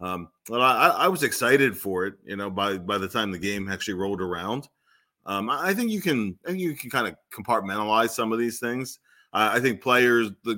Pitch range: 95-125 Hz